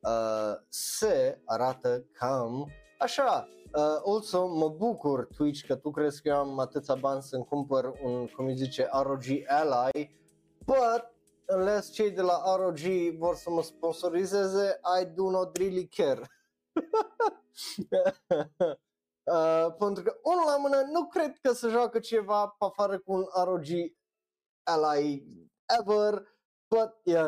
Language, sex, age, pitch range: Romanian, male, 20-39, 135-210 Hz